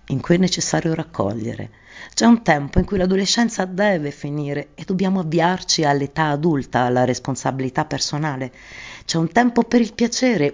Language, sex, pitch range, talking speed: Italian, female, 135-220 Hz, 155 wpm